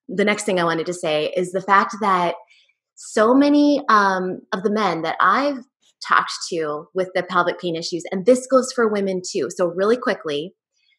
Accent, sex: American, female